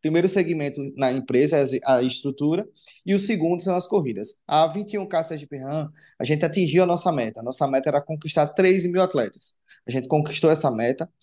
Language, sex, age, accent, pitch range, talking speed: Portuguese, male, 20-39, Brazilian, 140-185 Hz, 190 wpm